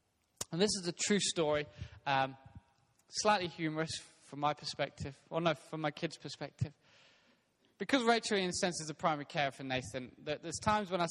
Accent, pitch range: British, 130-175 Hz